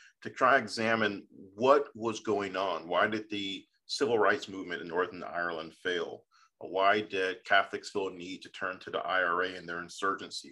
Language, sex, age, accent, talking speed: English, male, 40-59, American, 185 wpm